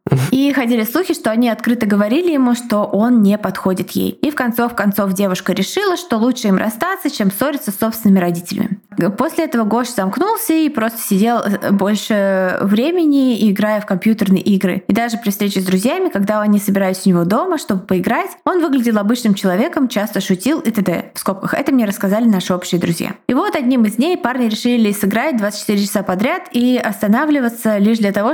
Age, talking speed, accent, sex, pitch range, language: 20-39, 180 wpm, native, female, 200-255 Hz, Russian